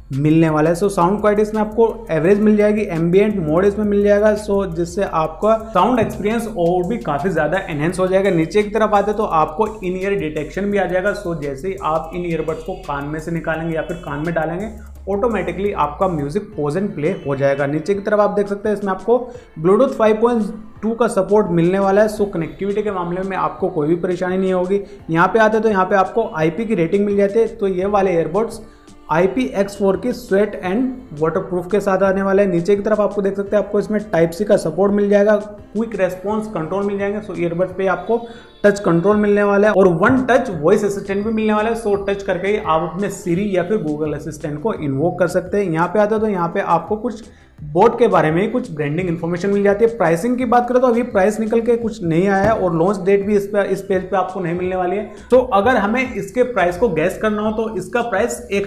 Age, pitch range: 30-49, 180-215 Hz